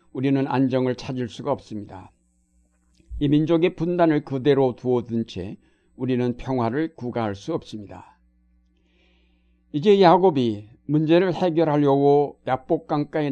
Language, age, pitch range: Korean, 60-79, 110-150 Hz